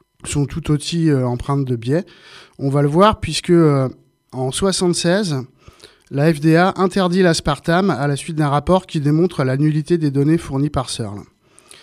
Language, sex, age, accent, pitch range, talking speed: French, male, 20-39, French, 140-175 Hz, 155 wpm